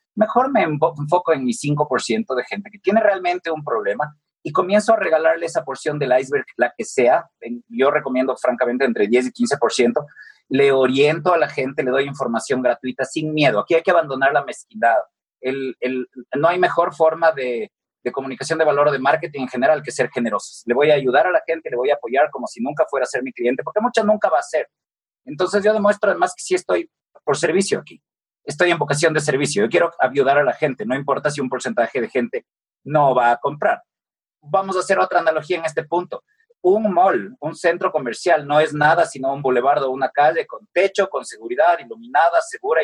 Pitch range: 135-205 Hz